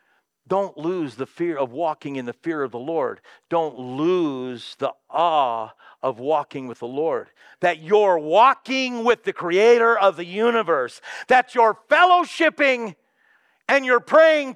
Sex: male